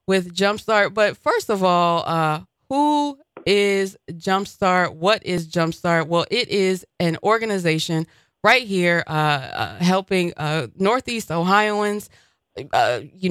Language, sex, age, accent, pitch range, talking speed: English, female, 20-39, American, 165-215 Hz, 125 wpm